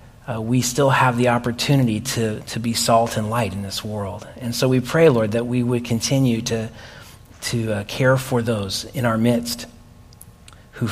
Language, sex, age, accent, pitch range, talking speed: English, male, 40-59, American, 110-125 Hz, 185 wpm